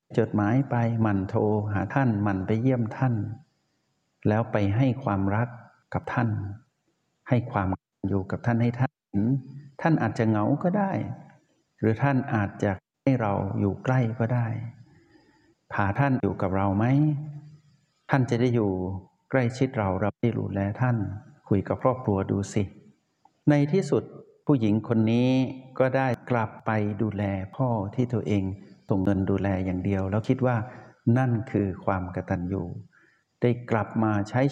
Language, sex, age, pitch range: Thai, male, 60-79, 100-130 Hz